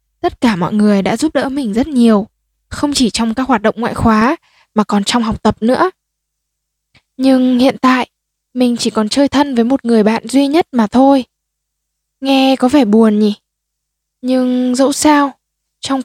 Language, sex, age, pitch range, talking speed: Vietnamese, female, 10-29, 225-280 Hz, 185 wpm